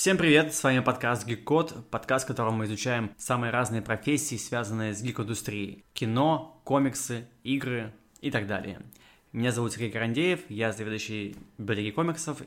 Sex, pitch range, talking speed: male, 115-150 Hz, 150 wpm